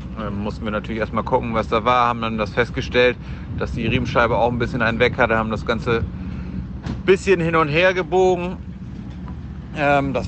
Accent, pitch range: German, 105-130 Hz